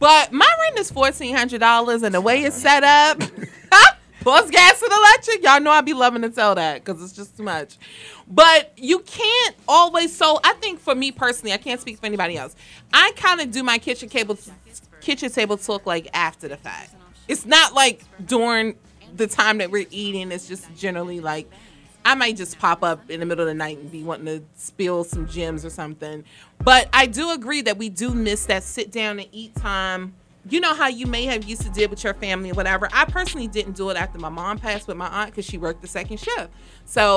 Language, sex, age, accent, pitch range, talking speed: English, female, 30-49, American, 180-260 Hz, 220 wpm